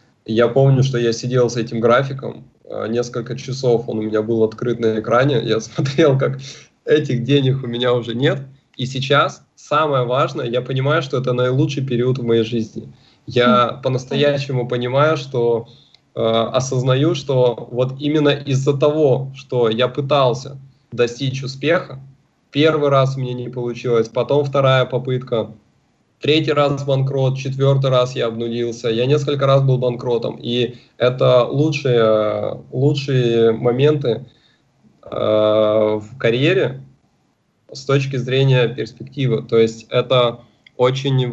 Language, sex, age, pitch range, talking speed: Russian, male, 20-39, 120-140 Hz, 130 wpm